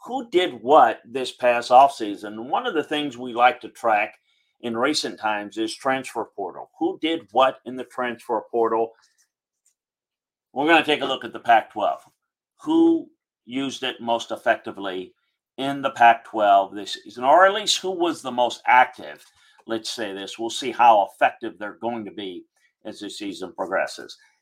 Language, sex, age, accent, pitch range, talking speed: English, male, 50-69, American, 105-150 Hz, 170 wpm